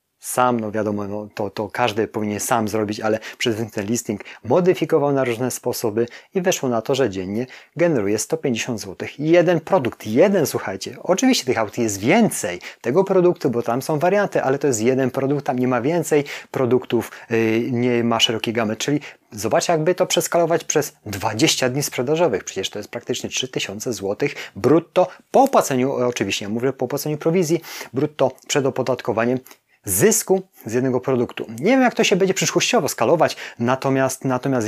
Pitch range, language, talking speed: 115-155 Hz, Polish, 170 wpm